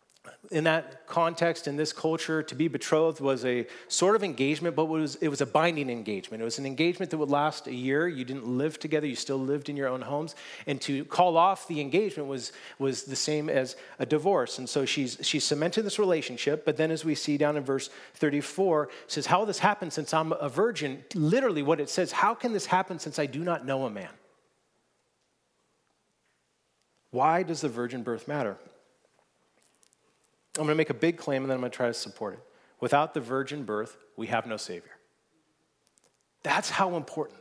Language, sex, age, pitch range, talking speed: English, male, 40-59, 130-160 Hz, 205 wpm